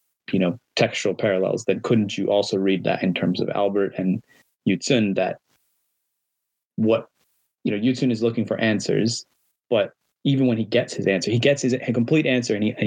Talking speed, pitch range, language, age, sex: 190 wpm, 95-115 Hz, English, 20-39, male